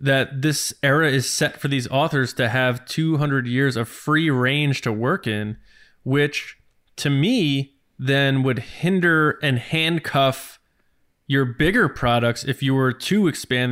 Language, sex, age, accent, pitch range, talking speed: English, male, 20-39, American, 125-150 Hz, 150 wpm